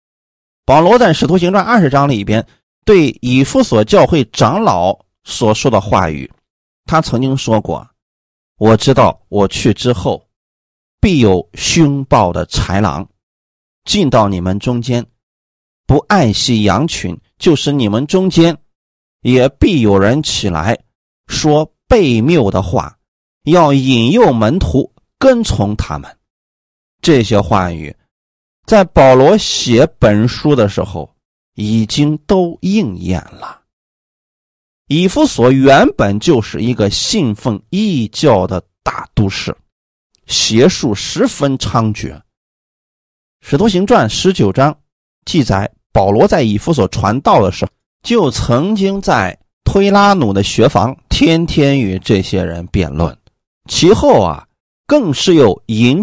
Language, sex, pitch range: Chinese, male, 95-150 Hz